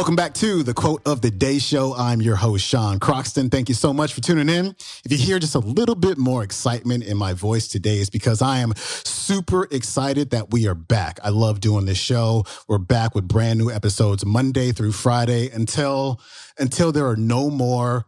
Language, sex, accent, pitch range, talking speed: English, male, American, 105-135 Hz, 210 wpm